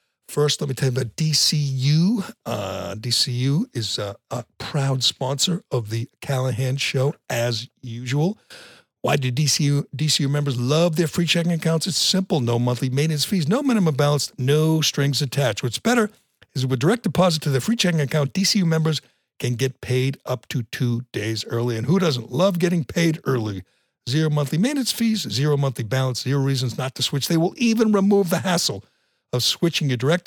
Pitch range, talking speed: 125-165 Hz, 180 wpm